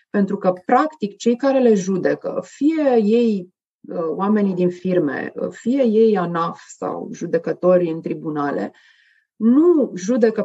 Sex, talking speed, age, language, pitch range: female, 120 wpm, 30-49, Romanian, 180-235 Hz